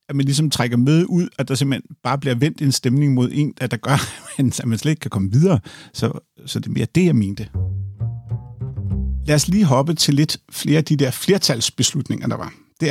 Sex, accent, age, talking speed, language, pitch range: male, native, 50-69, 220 wpm, Danish, 125-155 Hz